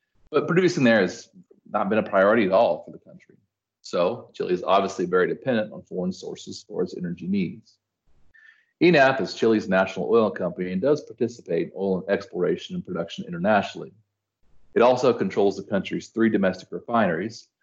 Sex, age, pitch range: male, 40-59, 95-155 Hz